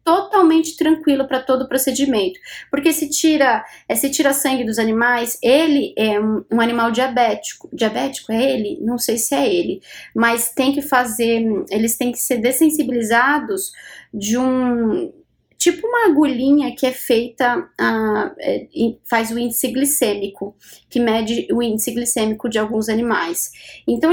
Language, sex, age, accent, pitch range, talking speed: Portuguese, female, 20-39, Brazilian, 230-285 Hz, 145 wpm